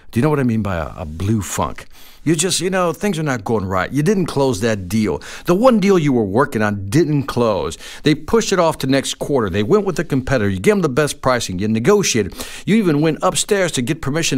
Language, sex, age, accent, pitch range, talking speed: English, male, 50-69, American, 120-185 Hz, 250 wpm